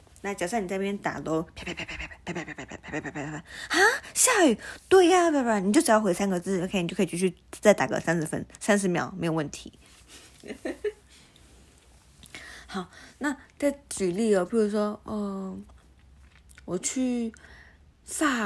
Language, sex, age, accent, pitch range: Chinese, female, 20-39, native, 165-225 Hz